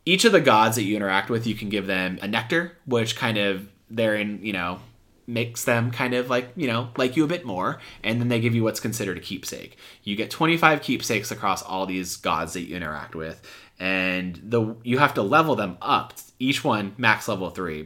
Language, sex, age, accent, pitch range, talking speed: English, male, 30-49, American, 95-125 Hz, 220 wpm